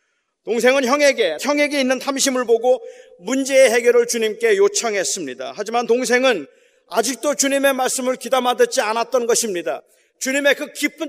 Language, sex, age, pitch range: Korean, male, 40-59, 235-315 Hz